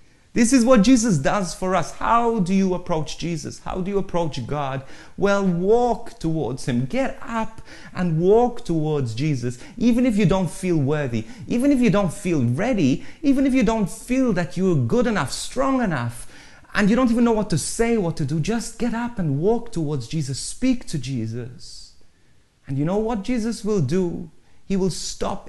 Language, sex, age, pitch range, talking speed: English, male, 30-49, 150-230 Hz, 190 wpm